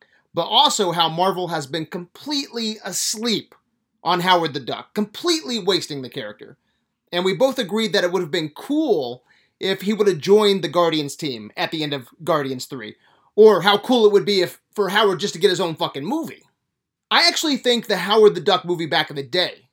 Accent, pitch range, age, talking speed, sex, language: American, 165-230 Hz, 30-49, 205 wpm, male, English